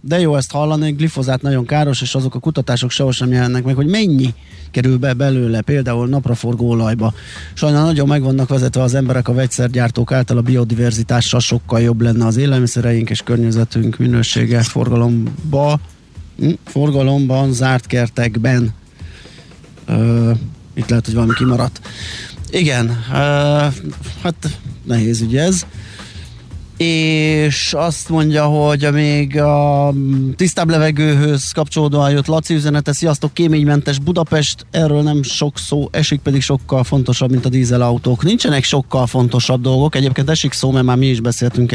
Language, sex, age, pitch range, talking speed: Hungarian, male, 30-49, 120-145 Hz, 140 wpm